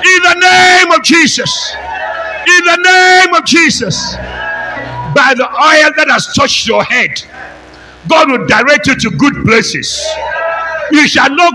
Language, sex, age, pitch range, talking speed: English, male, 60-79, 270-335 Hz, 145 wpm